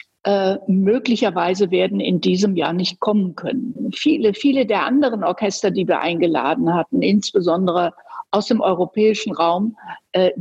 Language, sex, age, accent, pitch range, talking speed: German, female, 50-69, German, 180-240 Hz, 140 wpm